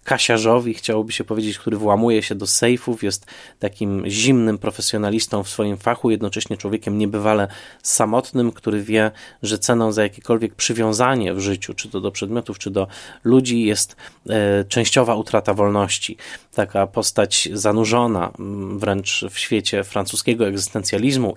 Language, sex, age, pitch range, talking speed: Polish, male, 20-39, 100-120 Hz, 135 wpm